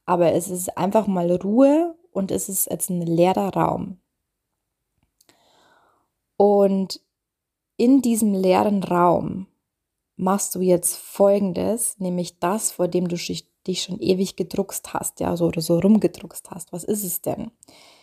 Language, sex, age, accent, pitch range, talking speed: German, female, 20-39, German, 175-210 Hz, 135 wpm